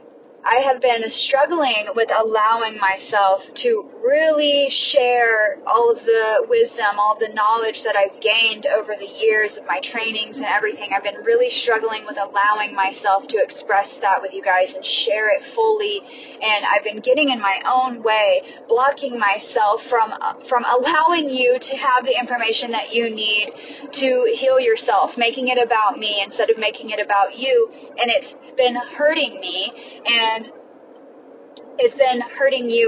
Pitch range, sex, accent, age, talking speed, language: 215-295 Hz, female, American, 20-39, 165 wpm, English